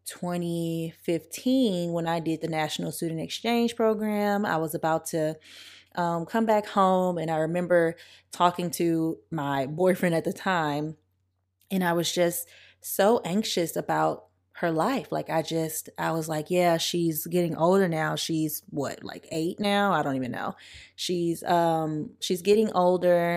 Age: 20-39